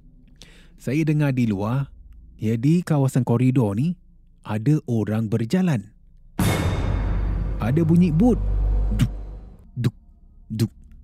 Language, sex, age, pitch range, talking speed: Malay, male, 30-49, 105-160 Hz, 100 wpm